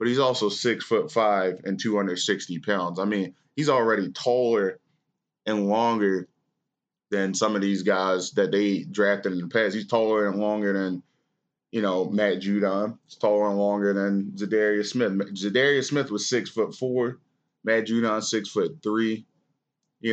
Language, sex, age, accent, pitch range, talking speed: English, male, 20-39, American, 100-115 Hz, 170 wpm